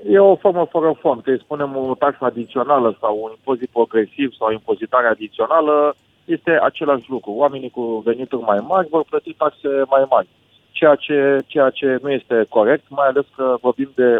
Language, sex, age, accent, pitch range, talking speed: Romanian, male, 30-49, native, 115-145 Hz, 185 wpm